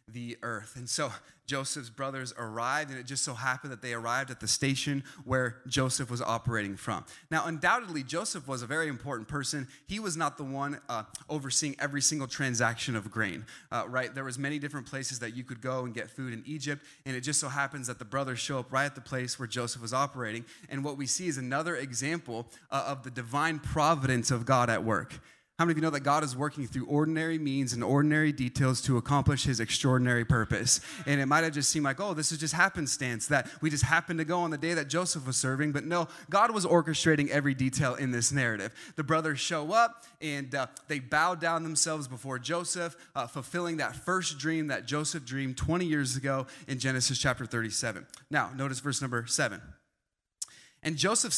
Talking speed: 215 wpm